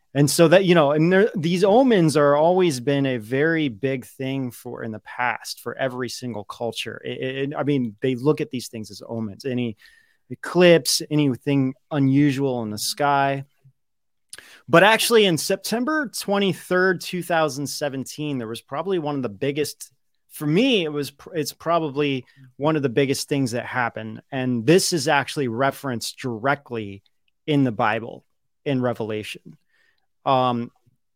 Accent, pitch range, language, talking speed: American, 120-155 Hz, English, 150 wpm